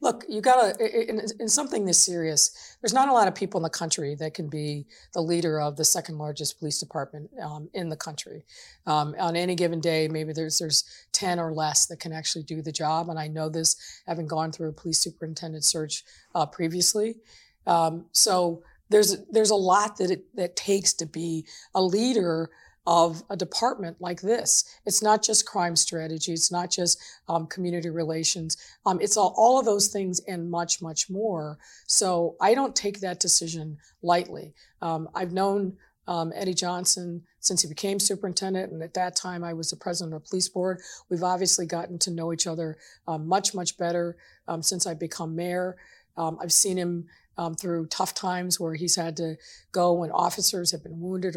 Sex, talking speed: female, 195 wpm